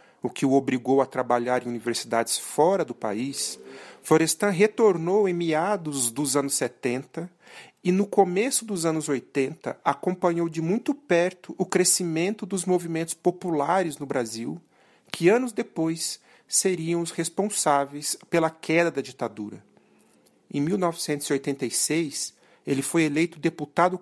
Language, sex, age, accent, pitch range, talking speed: Portuguese, male, 40-59, Brazilian, 140-185 Hz, 125 wpm